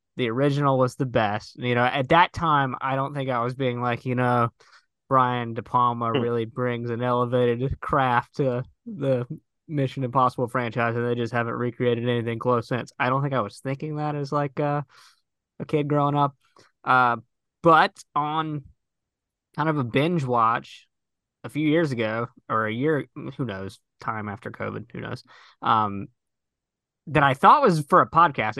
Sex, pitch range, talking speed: male, 120-140 Hz, 175 wpm